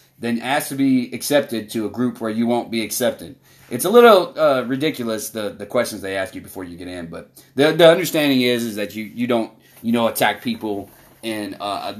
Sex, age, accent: male, 30-49, American